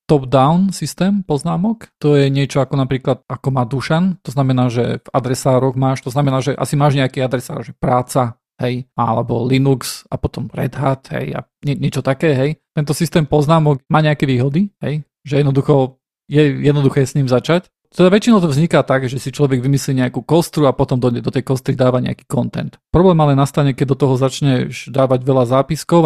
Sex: male